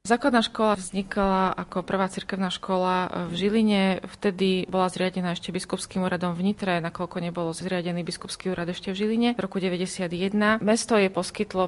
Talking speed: 160 wpm